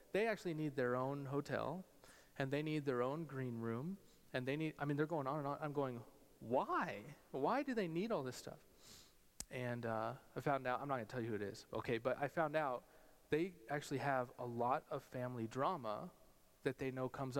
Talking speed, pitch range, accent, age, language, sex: 220 wpm, 135-180 Hz, American, 30-49, English, male